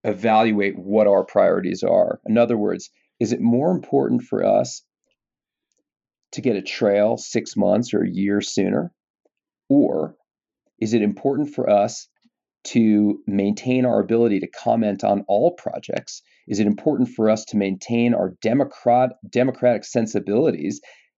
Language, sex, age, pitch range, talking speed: English, male, 40-59, 100-125 Hz, 140 wpm